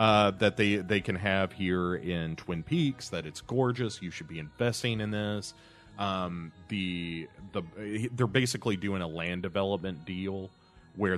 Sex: male